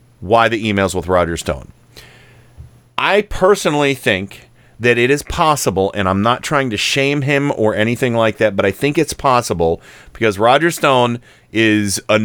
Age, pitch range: 40-59, 100-135 Hz